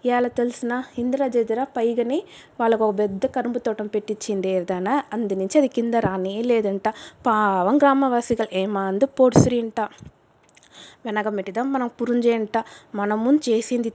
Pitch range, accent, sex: 205-250 Hz, native, female